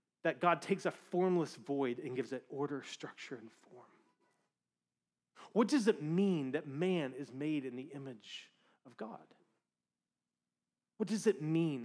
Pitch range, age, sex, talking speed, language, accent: 135-215 Hz, 30-49, male, 150 wpm, English, American